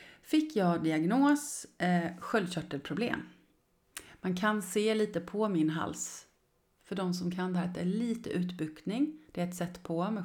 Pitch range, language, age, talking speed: 170-225 Hz, Swedish, 30-49, 160 wpm